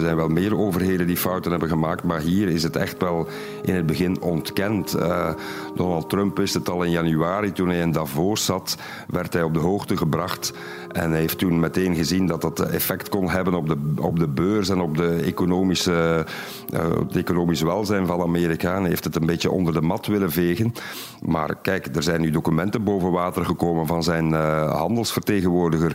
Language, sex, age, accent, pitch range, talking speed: Dutch, male, 50-69, Belgian, 85-100 Hz, 205 wpm